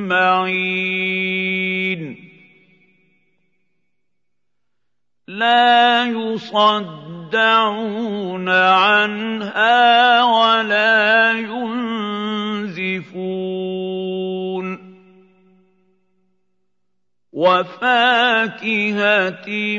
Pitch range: 185-225 Hz